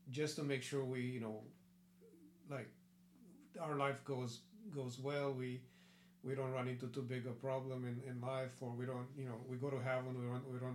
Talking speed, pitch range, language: 200 wpm, 130-165 Hz, English